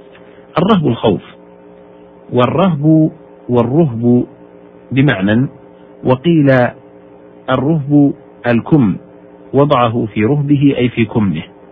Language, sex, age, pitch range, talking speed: Arabic, male, 50-69, 100-145 Hz, 70 wpm